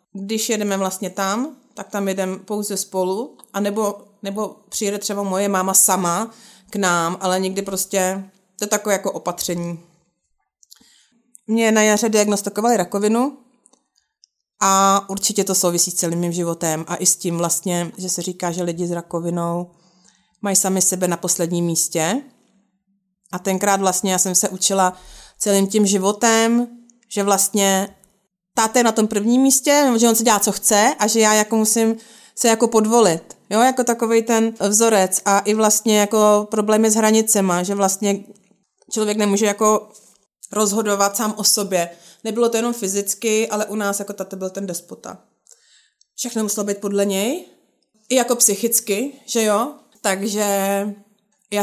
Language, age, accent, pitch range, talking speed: Czech, 30-49, native, 190-220 Hz, 155 wpm